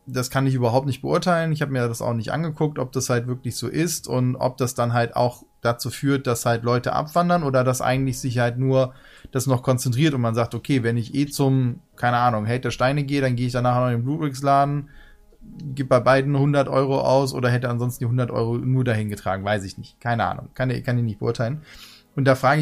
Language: German